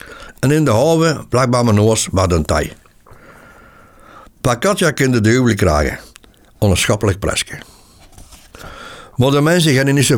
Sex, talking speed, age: male, 135 wpm, 60-79